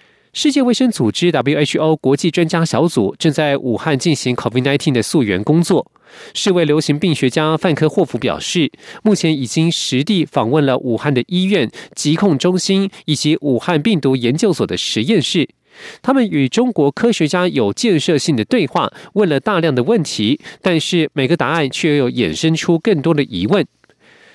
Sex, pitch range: male, 135-185 Hz